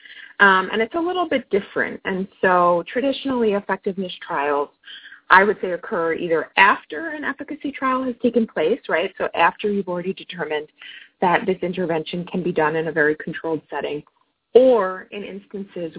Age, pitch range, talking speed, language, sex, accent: 30-49, 170-235 Hz, 165 wpm, English, female, American